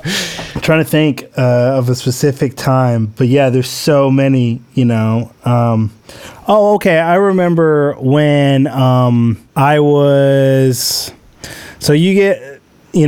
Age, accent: 20-39, American